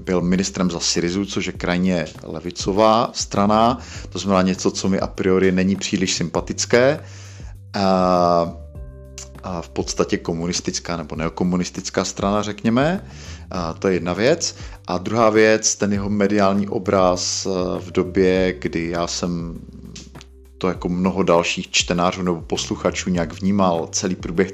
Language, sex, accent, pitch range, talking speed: Czech, male, native, 85-100 Hz, 135 wpm